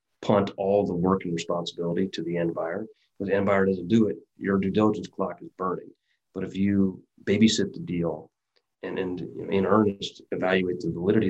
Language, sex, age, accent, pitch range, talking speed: English, male, 30-49, American, 90-105 Hz, 195 wpm